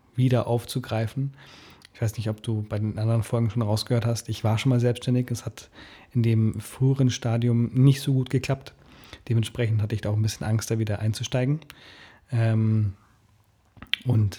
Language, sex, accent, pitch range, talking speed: German, male, German, 110-125 Hz, 165 wpm